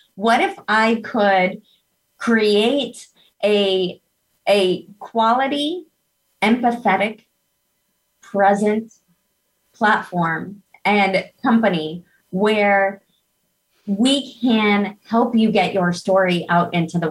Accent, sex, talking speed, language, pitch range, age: American, female, 85 wpm, English, 185-225 Hz, 30-49